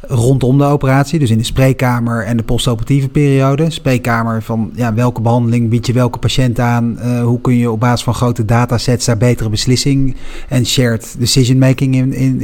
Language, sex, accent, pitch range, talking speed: Dutch, male, Dutch, 120-135 Hz, 185 wpm